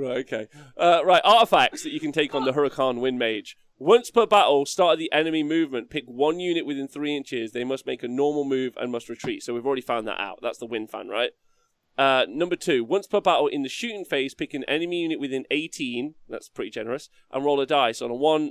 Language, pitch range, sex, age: English, 120-165 Hz, male, 30-49